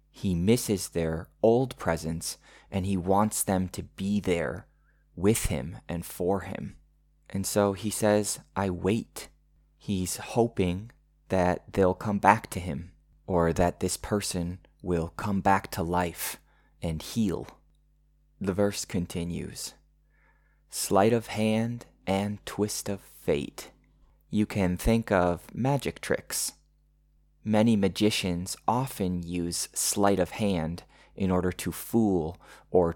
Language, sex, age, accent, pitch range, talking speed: English, male, 20-39, American, 85-100 Hz, 125 wpm